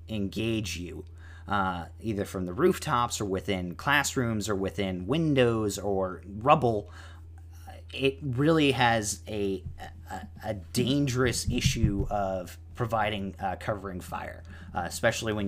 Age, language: 30-49, English